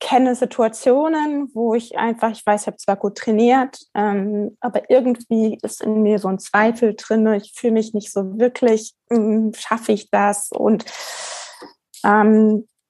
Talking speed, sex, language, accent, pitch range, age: 160 wpm, female, German, German, 210-250 Hz, 20-39